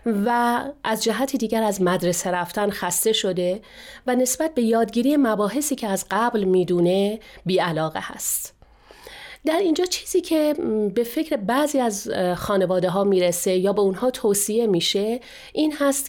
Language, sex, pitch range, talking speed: Persian, female, 190-260 Hz, 140 wpm